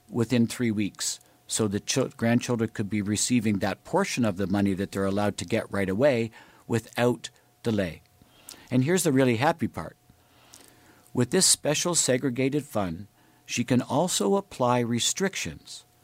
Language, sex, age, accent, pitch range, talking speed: English, male, 50-69, American, 100-130 Hz, 145 wpm